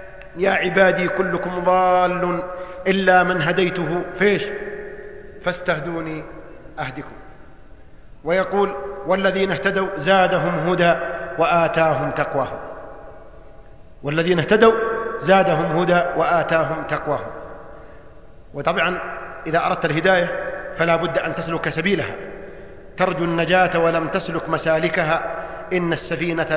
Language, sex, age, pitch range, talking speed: English, male, 40-59, 165-240 Hz, 90 wpm